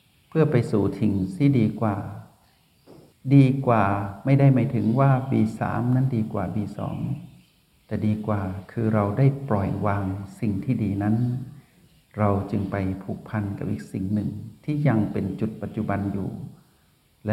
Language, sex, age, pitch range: Thai, male, 60-79, 100-125 Hz